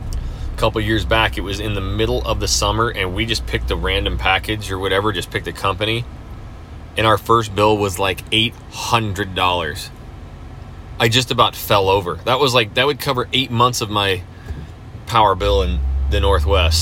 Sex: male